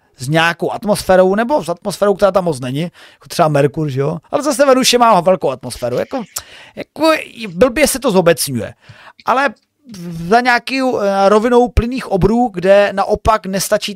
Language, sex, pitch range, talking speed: Czech, male, 175-235 Hz, 155 wpm